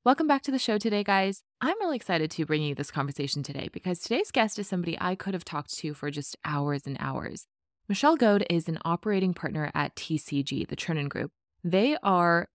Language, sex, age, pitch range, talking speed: English, female, 20-39, 155-205 Hz, 210 wpm